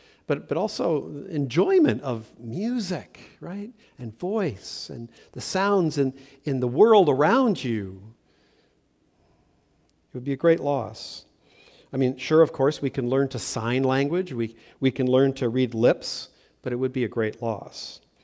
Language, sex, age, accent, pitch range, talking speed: English, male, 50-69, American, 120-155 Hz, 160 wpm